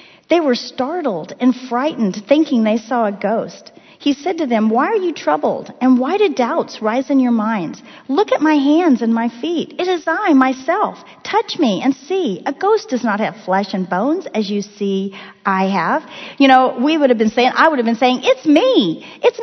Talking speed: 215 wpm